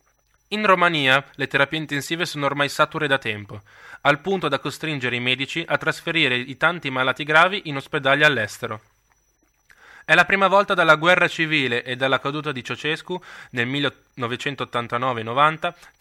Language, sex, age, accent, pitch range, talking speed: Italian, male, 20-39, native, 125-160 Hz, 145 wpm